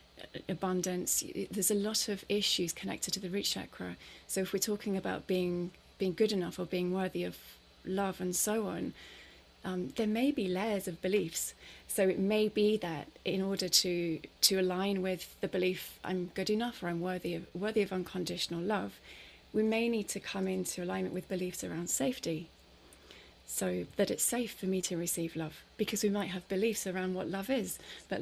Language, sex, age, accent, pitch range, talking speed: English, female, 30-49, British, 175-195 Hz, 190 wpm